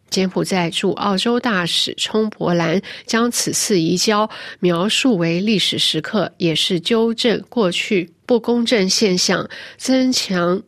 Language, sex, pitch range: Chinese, female, 190-240 Hz